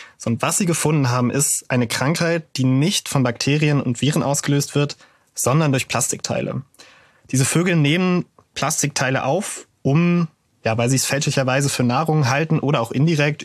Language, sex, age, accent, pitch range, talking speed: German, male, 20-39, German, 125-145 Hz, 160 wpm